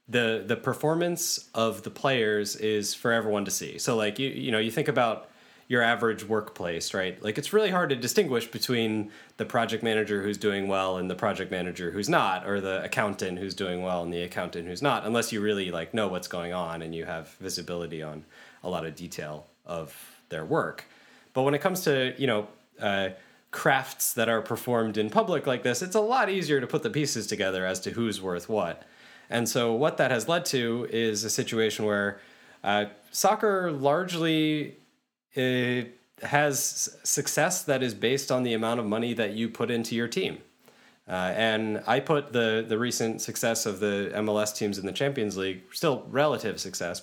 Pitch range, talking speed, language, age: 105-140 Hz, 195 wpm, English, 20-39